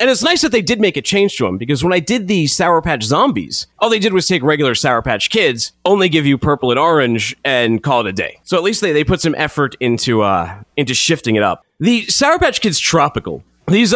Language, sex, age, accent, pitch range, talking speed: English, male, 30-49, American, 125-190 Hz, 255 wpm